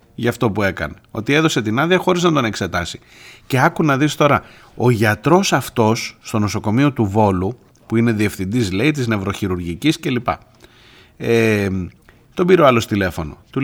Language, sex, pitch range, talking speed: Greek, male, 105-150 Hz, 165 wpm